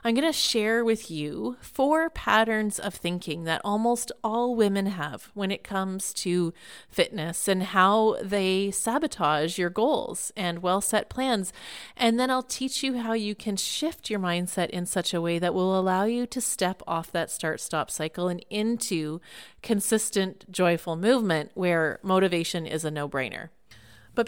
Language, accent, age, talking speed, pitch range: English, American, 30-49, 160 wpm, 175-235 Hz